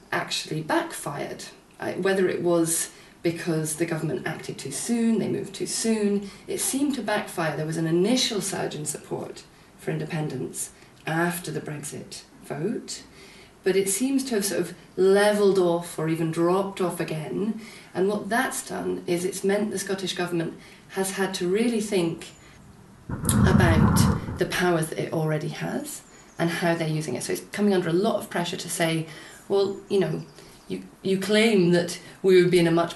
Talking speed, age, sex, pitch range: 175 wpm, 40-59, female, 165-200 Hz